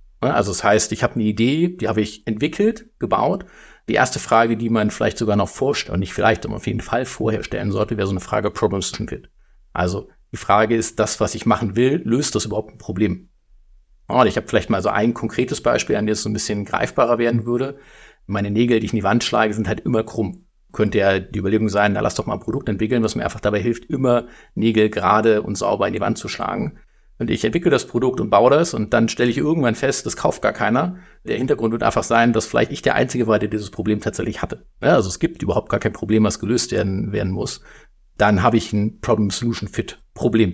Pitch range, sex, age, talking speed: 105-115 Hz, male, 50-69, 235 wpm